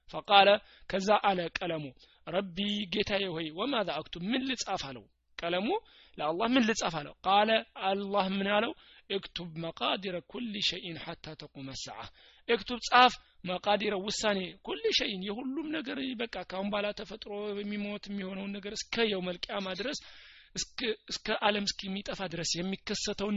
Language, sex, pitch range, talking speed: Amharic, male, 160-210 Hz, 125 wpm